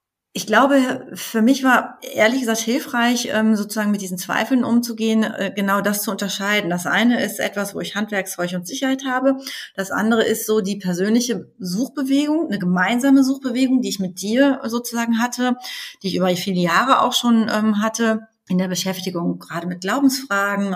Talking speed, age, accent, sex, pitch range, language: 165 wpm, 30-49, German, female, 175-225 Hz, German